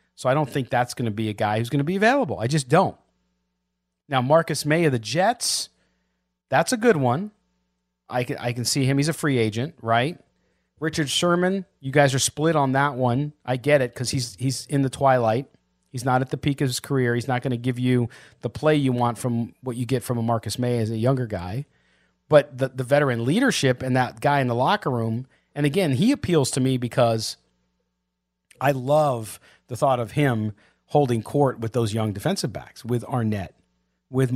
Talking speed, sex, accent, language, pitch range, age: 210 wpm, male, American, English, 110-145 Hz, 40-59